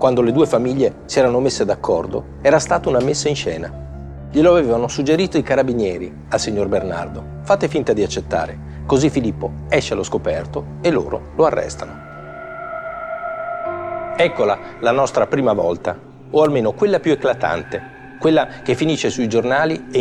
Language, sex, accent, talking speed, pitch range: Italian, male, native, 155 wpm, 110-160 Hz